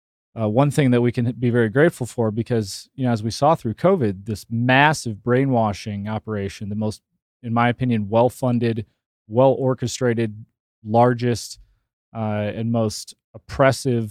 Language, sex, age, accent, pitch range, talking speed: English, male, 30-49, American, 110-130 Hz, 155 wpm